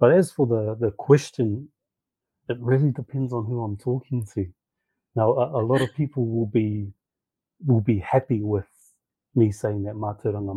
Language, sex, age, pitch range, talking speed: English, male, 30-49, 105-130 Hz, 170 wpm